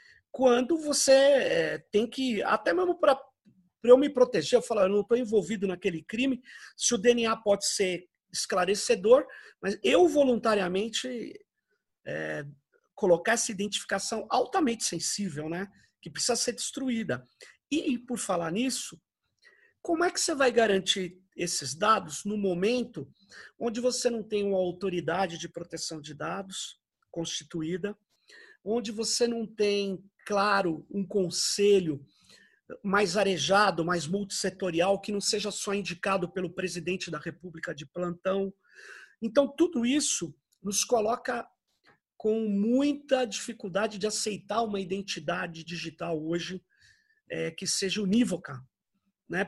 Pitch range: 190-250 Hz